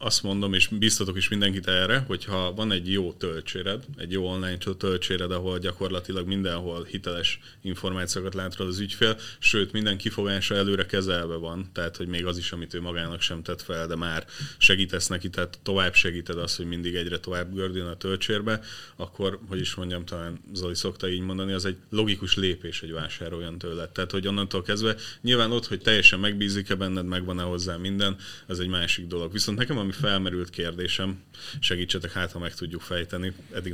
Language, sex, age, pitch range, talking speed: Hungarian, male, 30-49, 90-100 Hz, 180 wpm